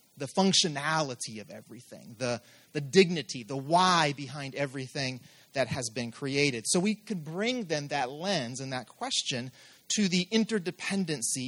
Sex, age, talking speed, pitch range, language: male, 30-49, 145 wpm, 140-195 Hz, English